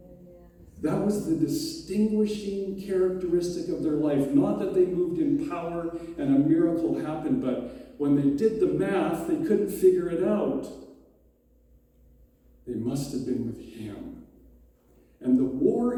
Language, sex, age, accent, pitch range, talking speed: English, male, 50-69, American, 110-175 Hz, 145 wpm